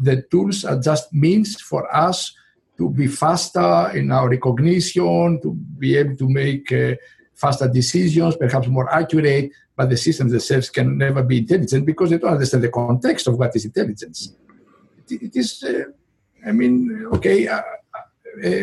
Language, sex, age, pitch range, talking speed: English, male, 60-79, 135-180 Hz, 160 wpm